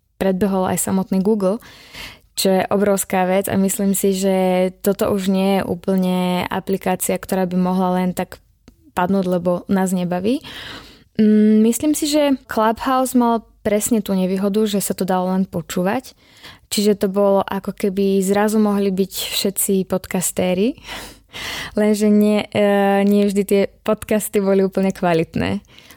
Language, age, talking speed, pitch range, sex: Slovak, 20-39, 140 wpm, 190-225 Hz, female